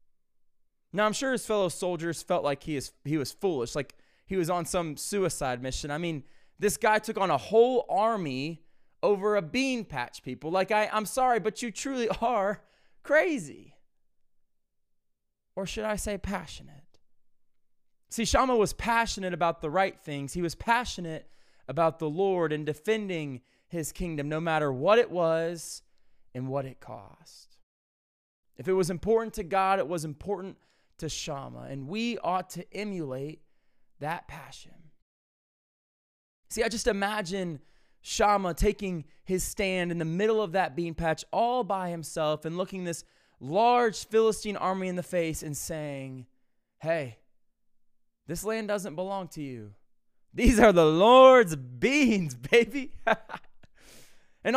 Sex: male